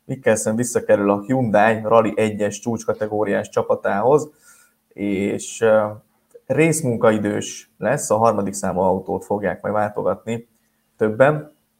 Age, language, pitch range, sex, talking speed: 20-39, Hungarian, 105-130 Hz, male, 100 wpm